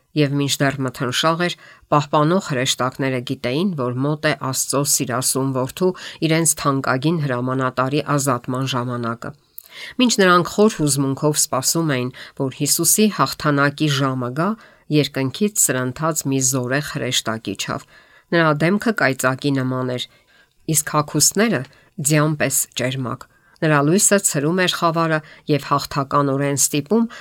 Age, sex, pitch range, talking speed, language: 50-69, female, 130-165 Hz, 95 wpm, English